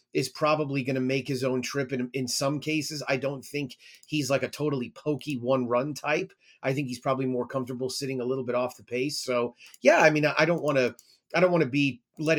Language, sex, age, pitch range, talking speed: English, male, 30-49, 130-150 Hz, 240 wpm